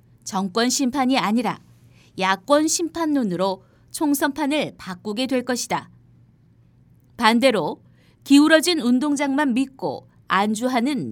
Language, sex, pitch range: Korean, female, 200-295 Hz